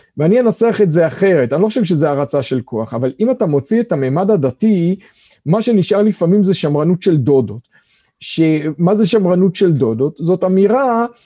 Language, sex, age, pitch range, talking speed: Hebrew, male, 40-59, 165-225 Hz, 175 wpm